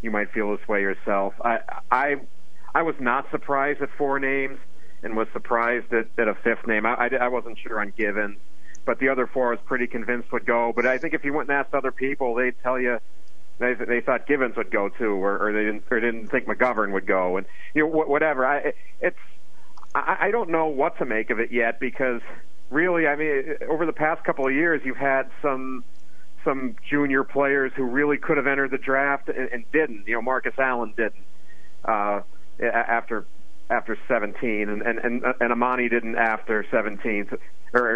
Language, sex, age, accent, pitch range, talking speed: English, male, 40-59, American, 110-135 Hz, 205 wpm